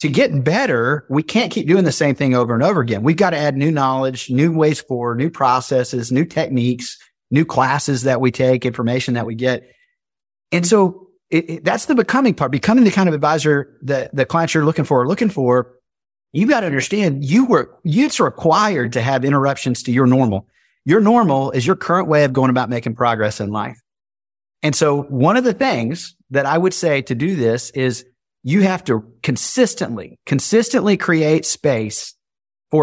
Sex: male